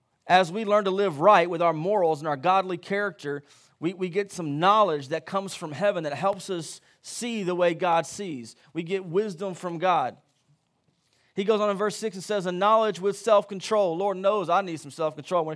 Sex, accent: male, American